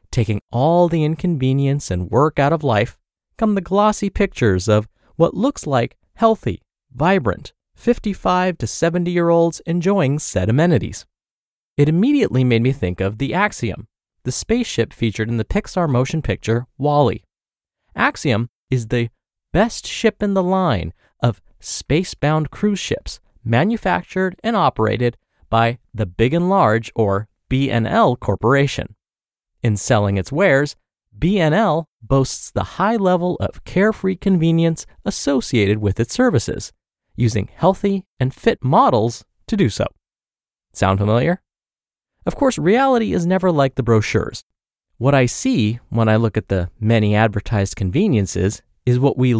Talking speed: 135 wpm